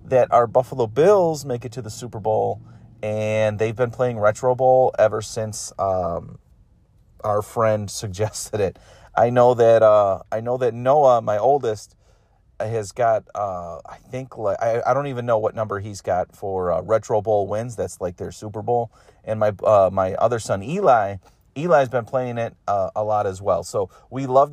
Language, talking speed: English, 190 wpm